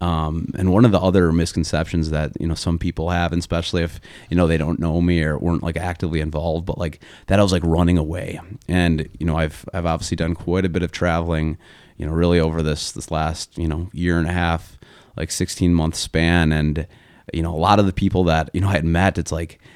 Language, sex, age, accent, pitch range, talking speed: English, male, 30-49, American, 80-90 Hz, 245 wpm